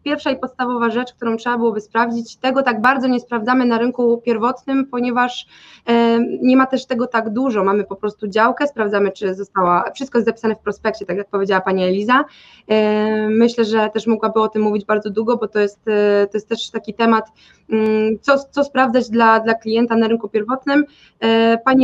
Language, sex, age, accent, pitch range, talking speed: Polish, female, 20-39, native, 210-245 Hz, 185 wpm